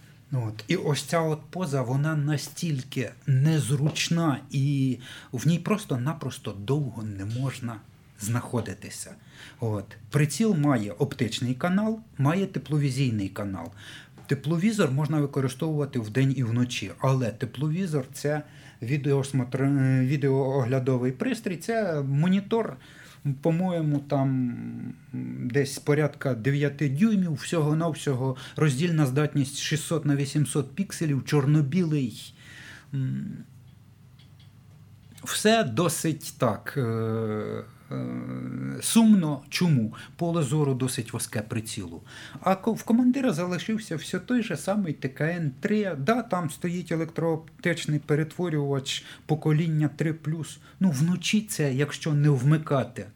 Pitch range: 130-160 Hz